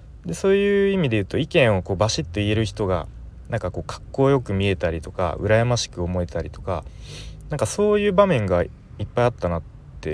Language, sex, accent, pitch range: Japanese, male, native, 85-130 Hz